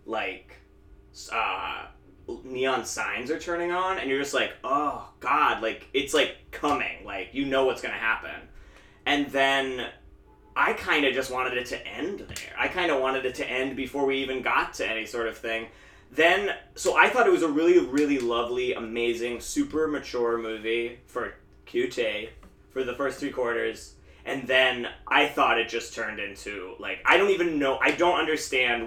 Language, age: English, 20-39